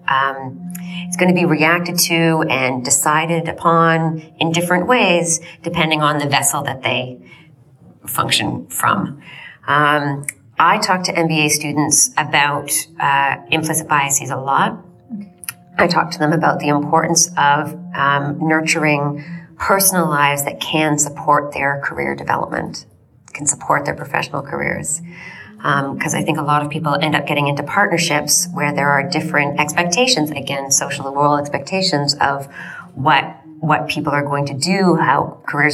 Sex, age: female, 30-49